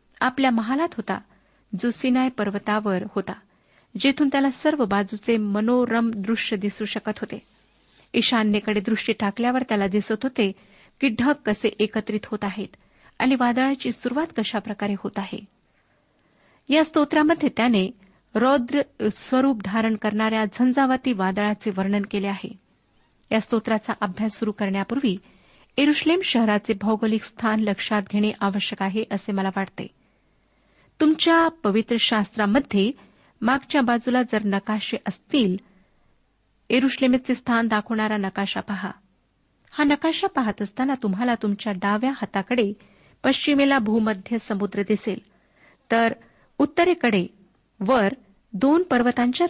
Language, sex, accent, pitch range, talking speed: Marathi, female, native, 205-255 Hz, 105 wpm